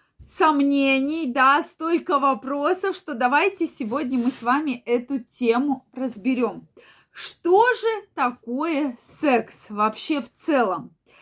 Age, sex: 20-39, female